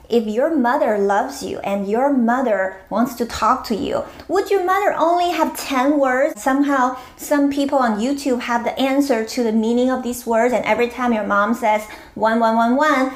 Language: English